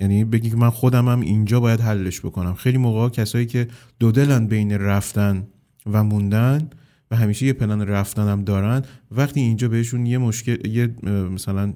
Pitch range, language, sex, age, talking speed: 105-130 Hz, Persian, male, 30-49, 165 wpm